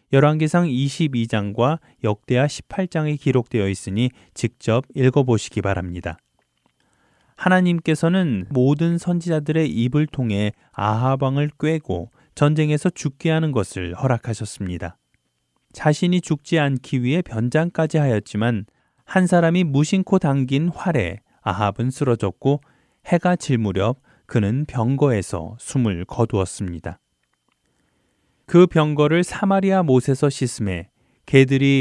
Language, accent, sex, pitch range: Korean, native, male, 110-160 Hz